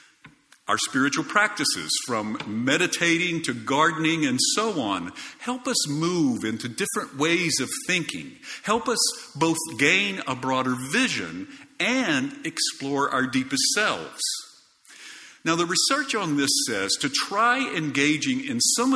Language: English